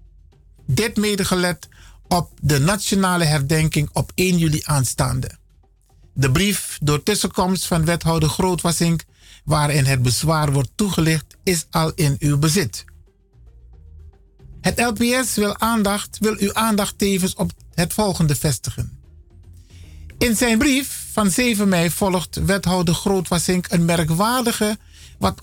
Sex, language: male, Dutch